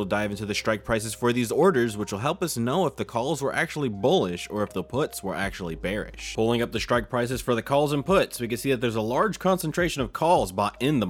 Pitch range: 110-145 Hz